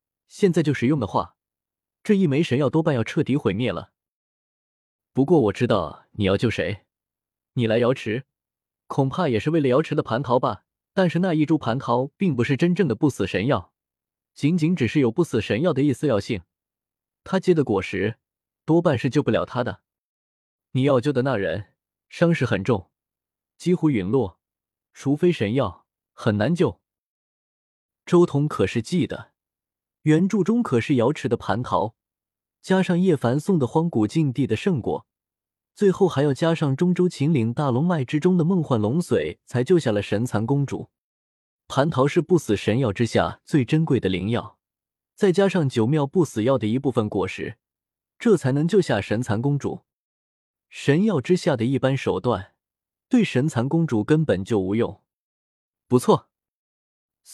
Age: 20-39